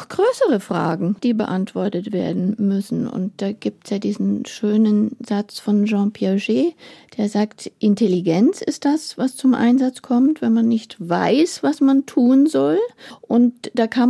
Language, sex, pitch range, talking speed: German, female, 200-245 Hz, 160 wpm